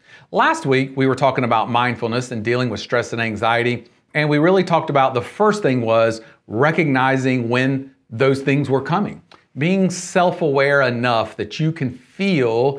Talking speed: 165 wpm